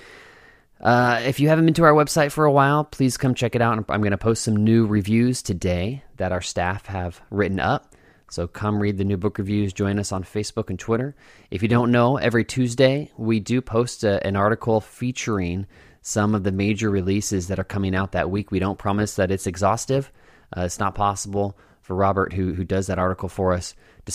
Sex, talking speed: male, 215 wpm